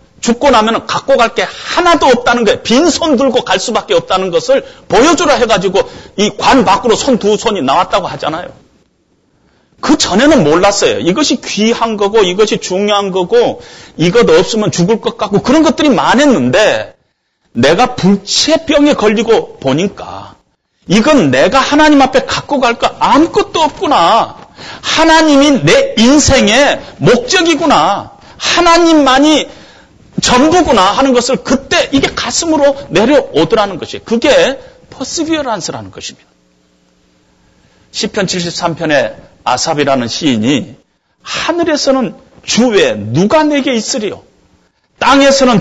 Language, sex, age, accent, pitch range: Korean, male, 40-59, native, 190-295 Hz